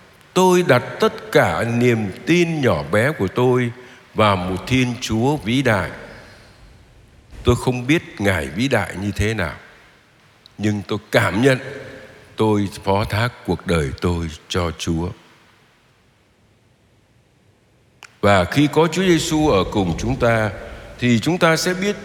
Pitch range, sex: 95-135 Hz, male